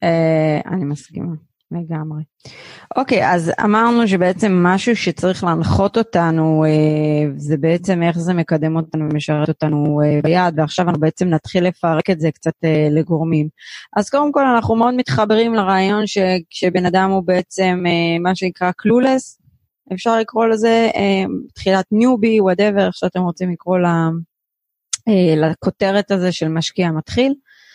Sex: female